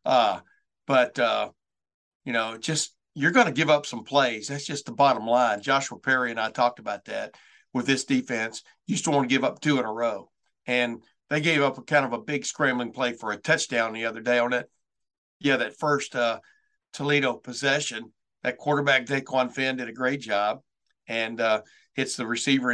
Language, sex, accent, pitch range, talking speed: English, male, American, 120-145 Hz, 200 wpm